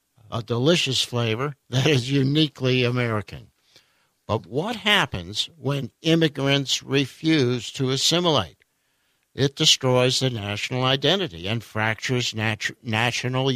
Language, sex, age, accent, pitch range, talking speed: English, male, 60-79, American, 120-150 Hz, 100 wpm